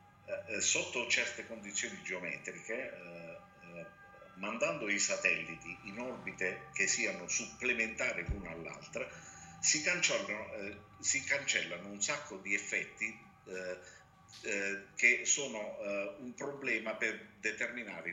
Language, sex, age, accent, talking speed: Italian, male, 50-69, native, 105 wpm